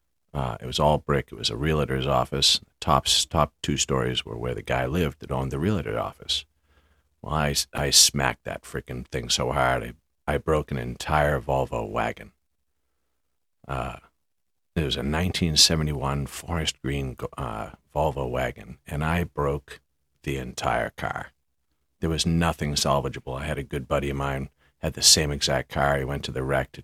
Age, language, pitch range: 50-69, English, 70-75 Hz